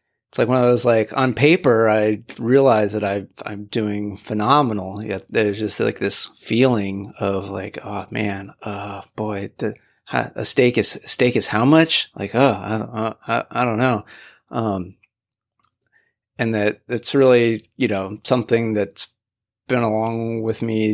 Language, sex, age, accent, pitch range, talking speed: English, male, 30-49, American, 100-120 Hz, 160 wpm